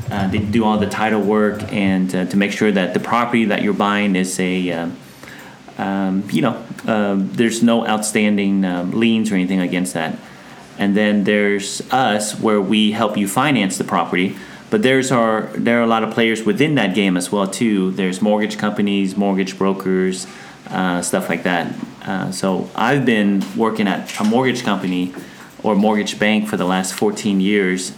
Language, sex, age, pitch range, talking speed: English, male, 30-49, 95-110 Hz, 180 wpm